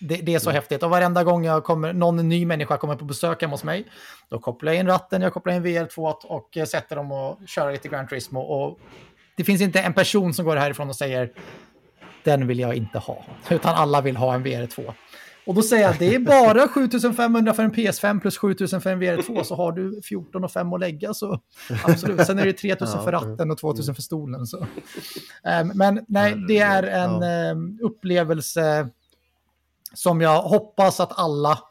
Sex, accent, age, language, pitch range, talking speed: male, native, 30-49, Swedish, 145-185 Hz, 200 wpm